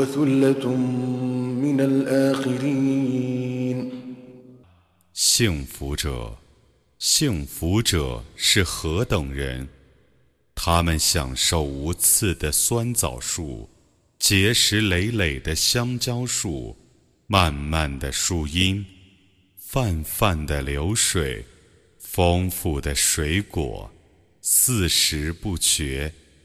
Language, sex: Arabic, male